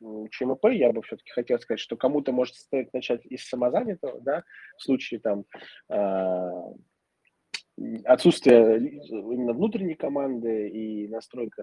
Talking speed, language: 120 wpm, Russian